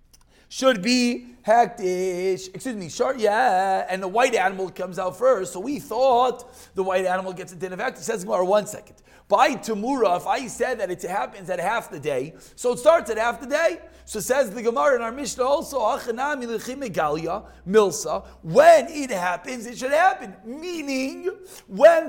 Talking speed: 180 wpm